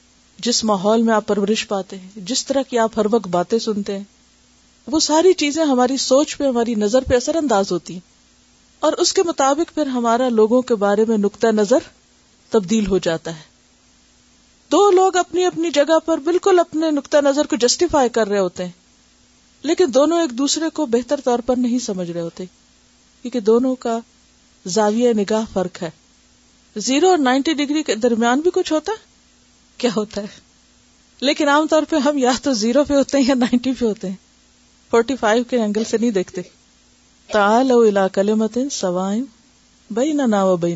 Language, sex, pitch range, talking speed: Urdu, female, 200-280 Hz, 170 wpm